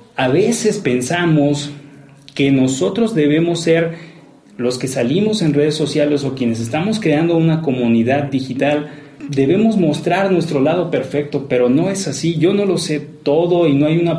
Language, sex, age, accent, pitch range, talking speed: Spanish, male, 40-59, Mexican, 140-175 Hz, 160 wpm